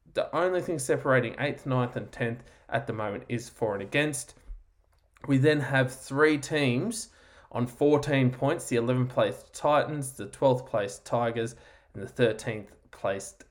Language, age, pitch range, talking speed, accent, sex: English, 20-39, 110-145 Hz, 140 wpm, Australian, male